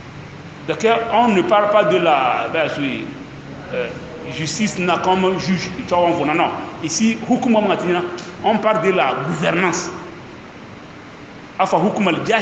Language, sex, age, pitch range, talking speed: English, male, 30-49, 160-200 Hz, 95 wpm